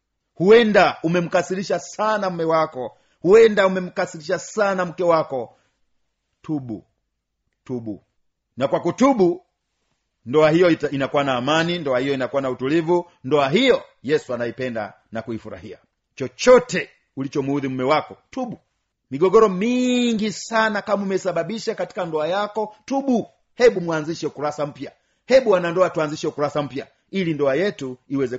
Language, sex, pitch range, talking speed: Swahili, male, 140-215 Hz, 125 wpm